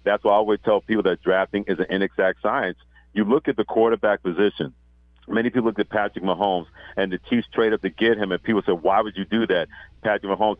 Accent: American